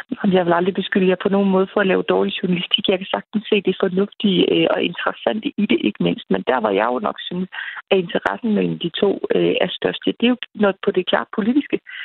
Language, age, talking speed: Danish, 30-49, 235 wpm